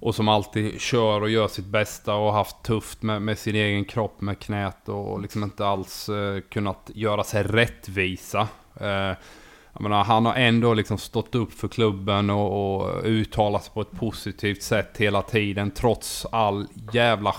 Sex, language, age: male, Swedish, 20-39